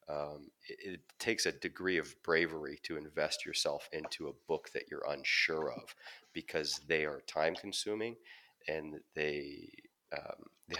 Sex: male